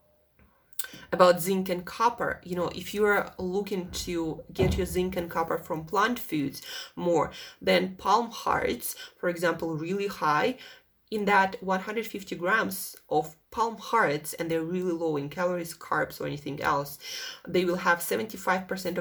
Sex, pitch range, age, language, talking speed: female, 165-220 Hz, 30-49, English, 150 wpm